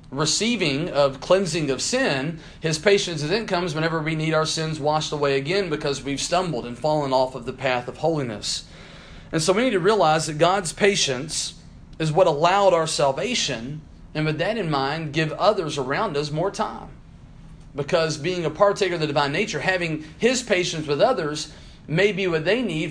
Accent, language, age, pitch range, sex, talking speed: American, English, 40-59, 130-165 Hz, male, 185 wpm